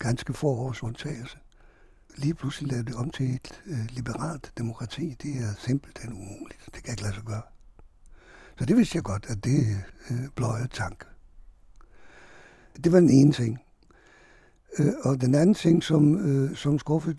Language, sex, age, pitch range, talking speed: Danish, male, 60-79, 115-145 Hz, 160 wpm